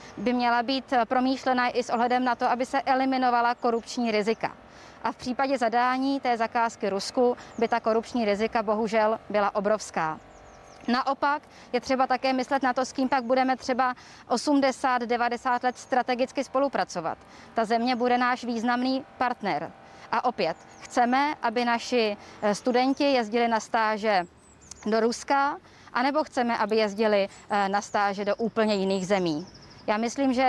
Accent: native